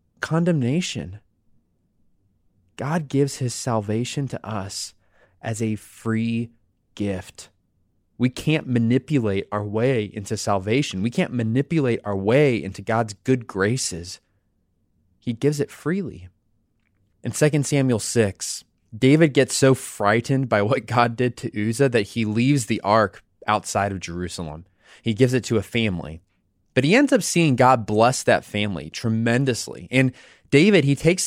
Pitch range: 105-145 Hz